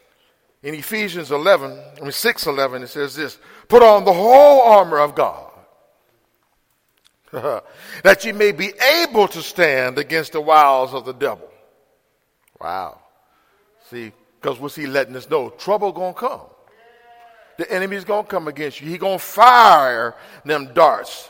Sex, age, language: male, 50-69, English